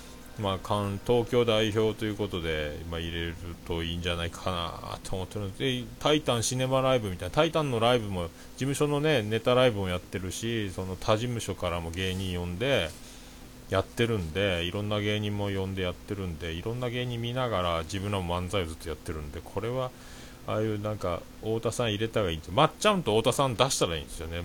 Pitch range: 90-125 Hz